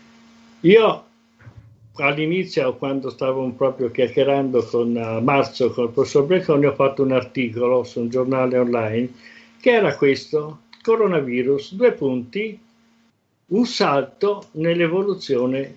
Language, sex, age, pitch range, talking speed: Italian, male, 60-79, 125-200 Hz, 110 wpm